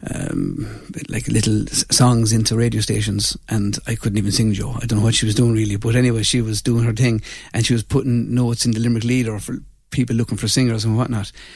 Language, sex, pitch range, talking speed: English, male, 115-135 Hz, 230 wpm